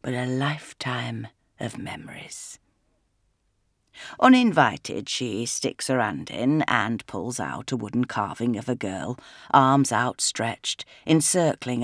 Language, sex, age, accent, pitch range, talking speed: English, female, 50-69, British, 110-145 Hz, 115 wpm